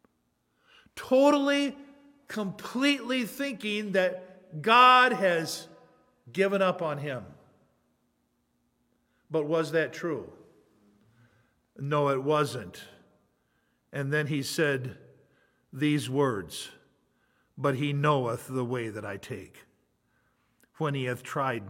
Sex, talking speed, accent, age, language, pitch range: male, 95 wpm, American, 50-69, English, 125-155 Hz